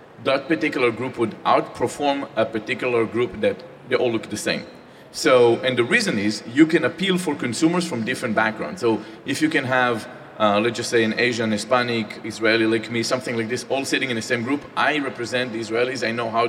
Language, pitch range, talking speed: English, 120-150 Hz, 210 wpm